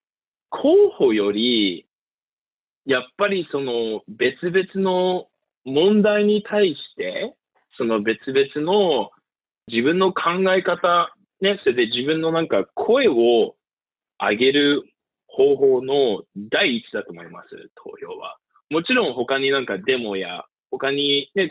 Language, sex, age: Japanese, male, 20-39